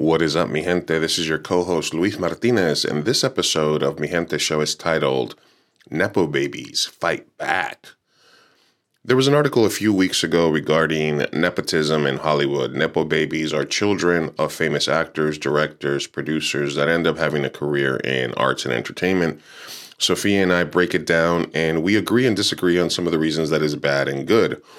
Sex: male